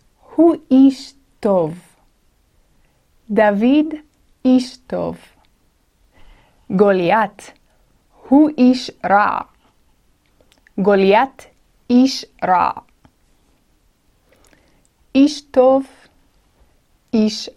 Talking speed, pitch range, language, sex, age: 55 wpm, 200-260 Hz, Hebrew, female, 30-49